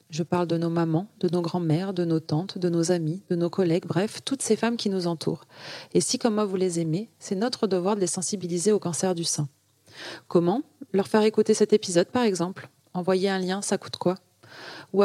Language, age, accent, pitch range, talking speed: French, 30-49, French, 165-210 Hz, 225 wpm